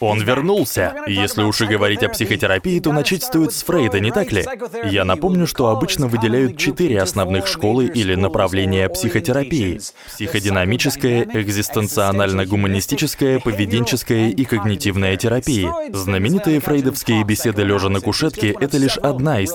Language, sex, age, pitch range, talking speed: Russian, male, 20-39, 100-135 Hz, 130 wpm